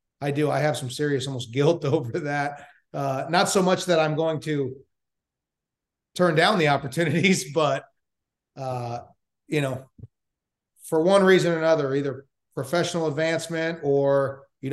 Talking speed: 145 wpm